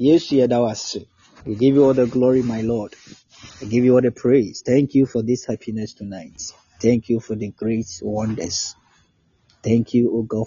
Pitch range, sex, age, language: 105-120 Hz, male, 30-49, Japanese